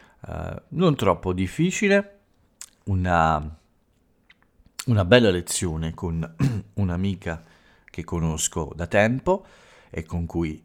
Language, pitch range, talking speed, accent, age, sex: Italian, 80-100 Hz, 90 wpm, native, 50-69, male